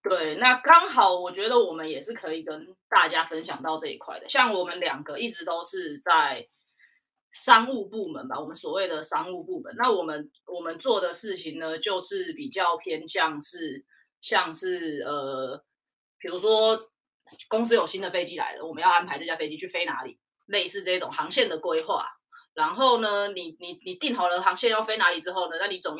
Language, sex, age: Chinese, female, 20-39